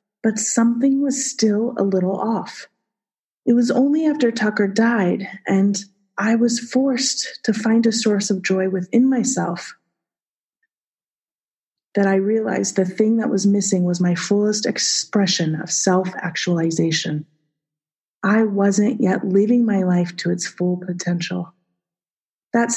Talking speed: 130 wpm